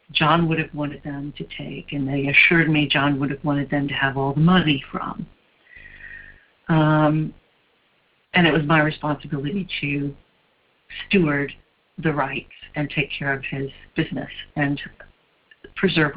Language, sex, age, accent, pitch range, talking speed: English, female, 50-69, American, 150-180 Hz, 150 wpm